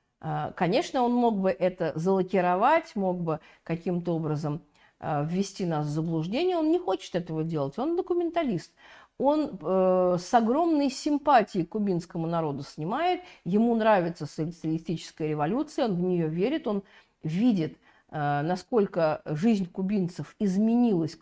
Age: 50-69